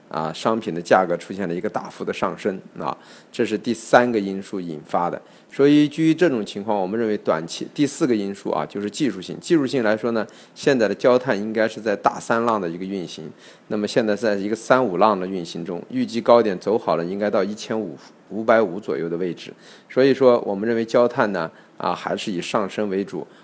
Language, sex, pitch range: Chinese, male, 100-120 Hz